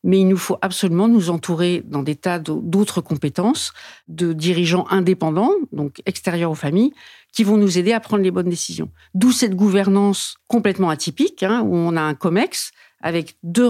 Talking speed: 180 wpm